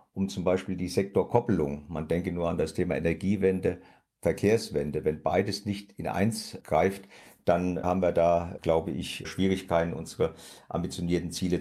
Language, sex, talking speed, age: German, male, 150 wpm, 50-69